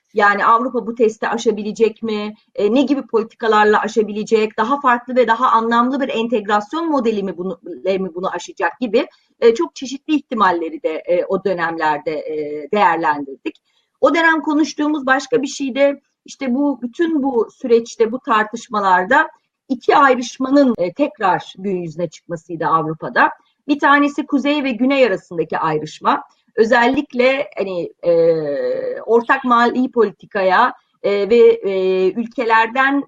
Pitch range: 195-275 Hz